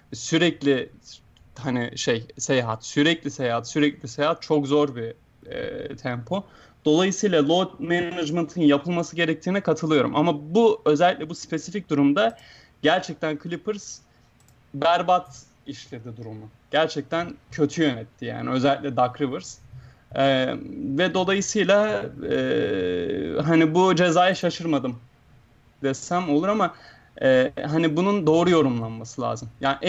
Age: 30-49